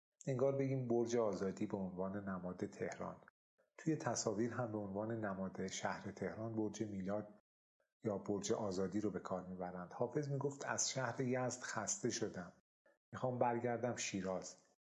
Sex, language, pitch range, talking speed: male, Persian, 95-115 Hz, 140 wpm